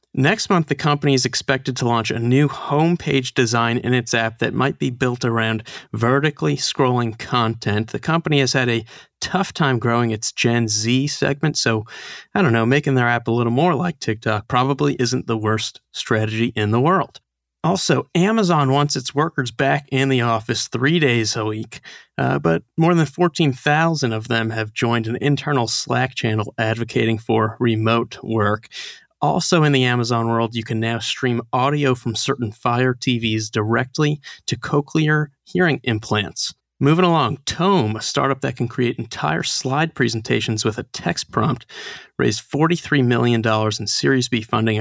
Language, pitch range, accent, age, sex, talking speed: English, 115-145 Hz, American, 30-49, male, 170 wpm